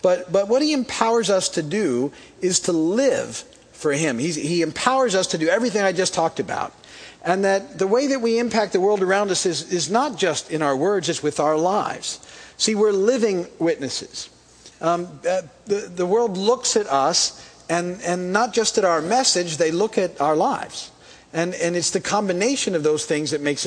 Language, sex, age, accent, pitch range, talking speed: English, male, 50-69, American, 145-195 Hz, 200 wpm